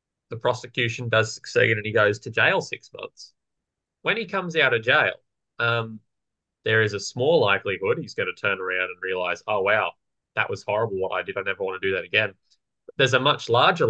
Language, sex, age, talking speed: English, male, 20-39, 210 wpm